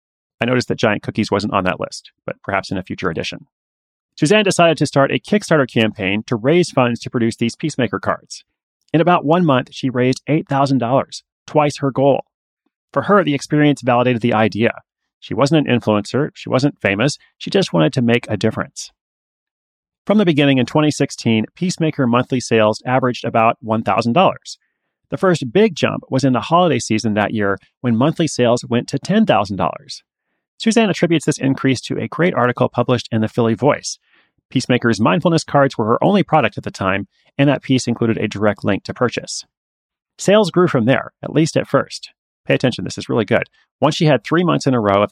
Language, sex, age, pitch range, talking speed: English, male, 30-49, 115-150 Hz, 190 wpm